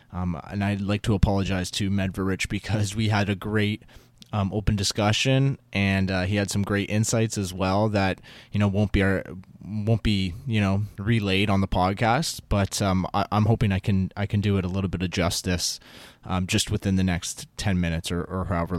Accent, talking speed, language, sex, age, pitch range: American, 210 wpm, English, male, 20-39, 95-115 Hz